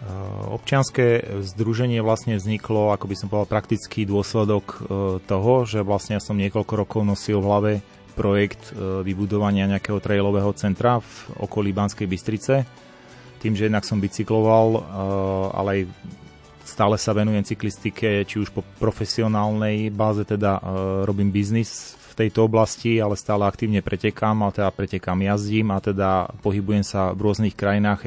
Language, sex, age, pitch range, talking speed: Slovak, male, 30-49, 100-110 Hz, 140 wpm